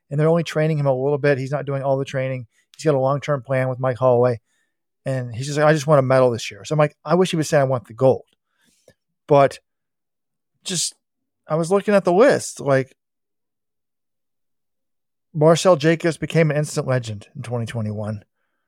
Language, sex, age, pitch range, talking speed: English, male, 40-59, 125-155 Hz, 200 wpm